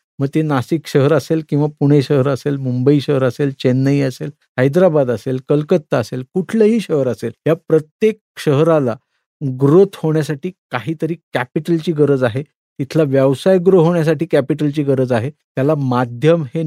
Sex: male